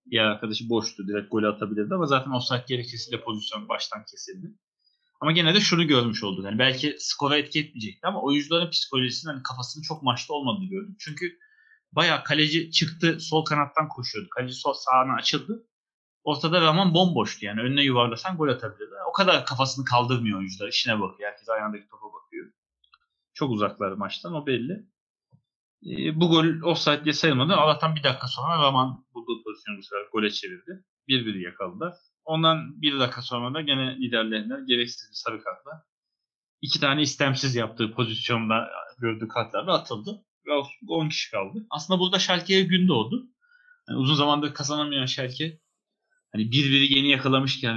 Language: Turkish